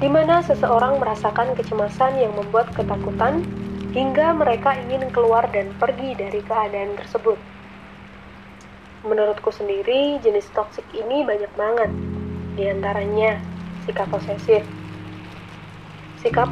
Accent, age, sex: native, 20-39, female